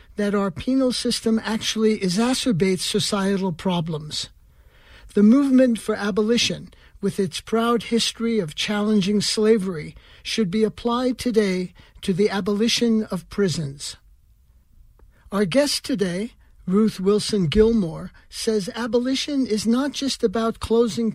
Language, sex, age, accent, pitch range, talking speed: English, male, 60-79, American, 185-230 Hz, 115 wpm